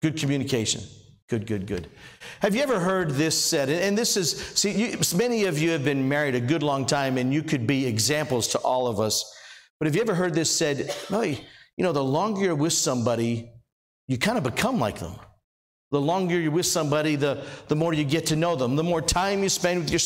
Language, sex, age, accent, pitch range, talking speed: English, male, 50-69, American, 120-165 Hz, 220 wpm